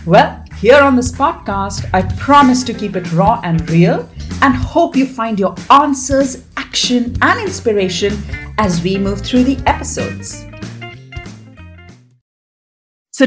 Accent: Indian